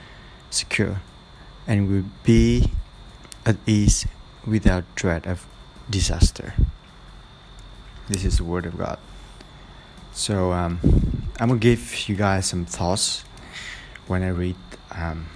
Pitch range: 95-110 Hz